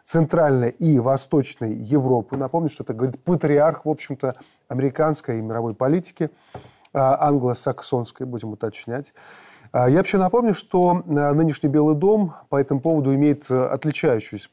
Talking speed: 125 wpm